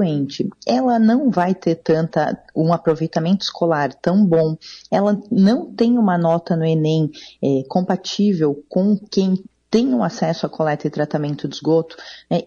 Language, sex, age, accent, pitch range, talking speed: Portuguese, female, 30-49, Brazilian, 165-225 Hz, 155 wpm